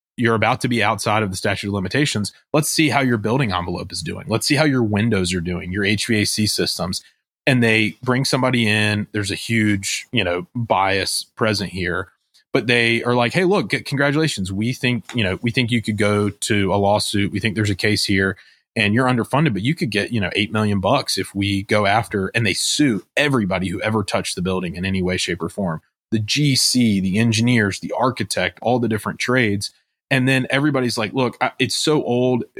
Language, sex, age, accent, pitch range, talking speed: English, male, 20-39, American, 95-120 Hz, 210 wpm